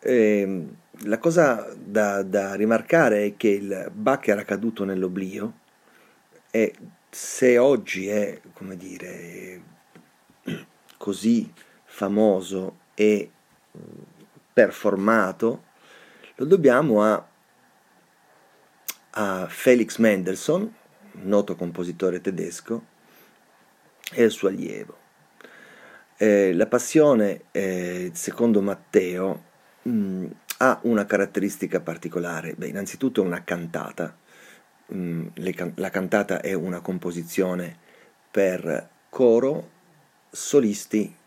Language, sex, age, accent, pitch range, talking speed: Italian, male, 30-49, native, 90-105 Hz, 85 wpm